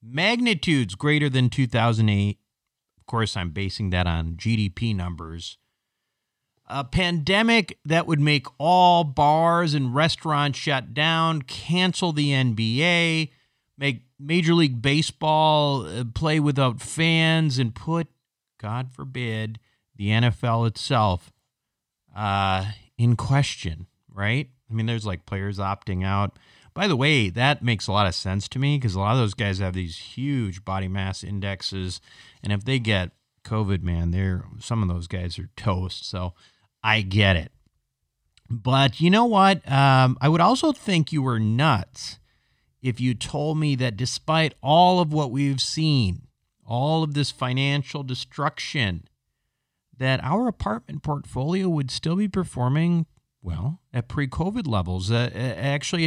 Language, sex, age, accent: English, male, 40-59, American